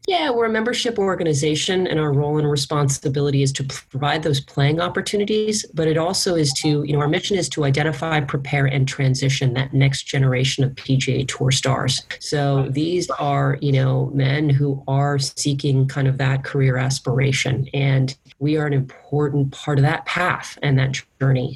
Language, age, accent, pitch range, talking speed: English, 30-49, American, 135-150 Hz, 180 wpm